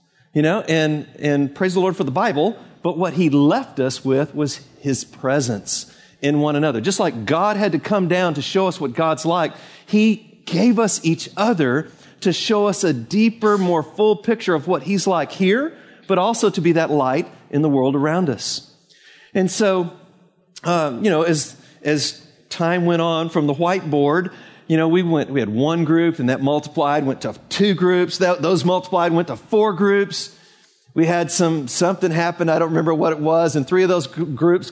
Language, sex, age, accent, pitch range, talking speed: English, male, 50-69, American, 150-185 Hz, 200 wpm